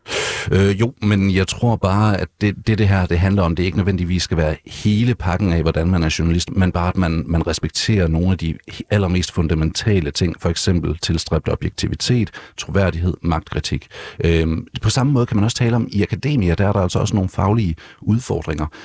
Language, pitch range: Danish, 85-105 Hz